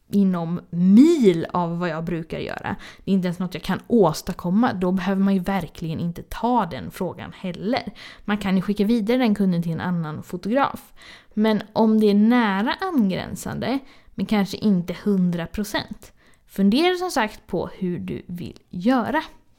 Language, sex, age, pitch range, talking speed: Swedish, female, 20-39, 190-245 Hz, 170 wpm